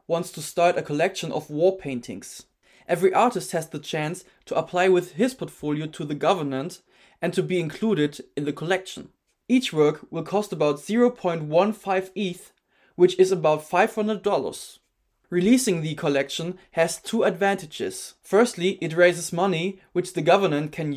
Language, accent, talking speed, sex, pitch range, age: English, German, 150 wpm, male, 150-190 Hz, 20-39